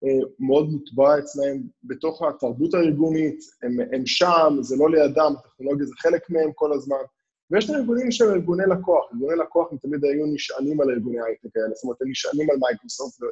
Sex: male